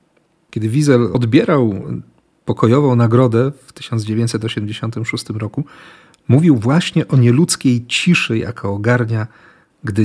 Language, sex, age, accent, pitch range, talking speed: Polish, male, 40-59, native, 105-135 Hz, 95 wpm